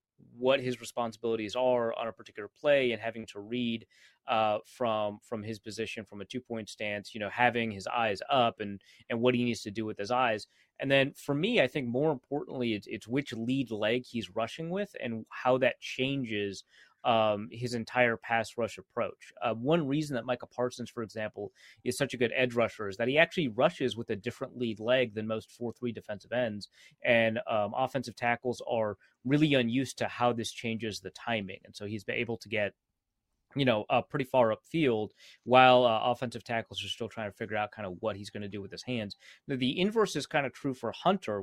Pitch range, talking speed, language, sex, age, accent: 110-130 Hz, 215 wpm, English, male, 30-49, American